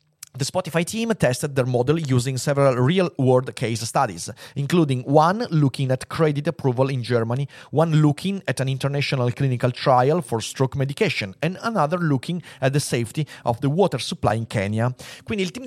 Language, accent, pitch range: Italian, native, 125-165 Hz